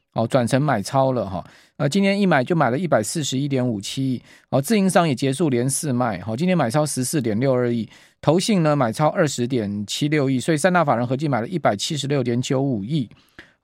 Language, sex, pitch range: Chinese, male, 125-155 Hz